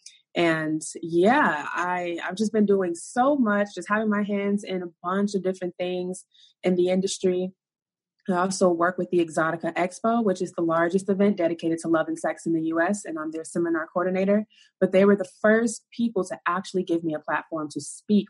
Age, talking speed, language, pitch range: 20-39, 200 wpm, English, 165-200 Hz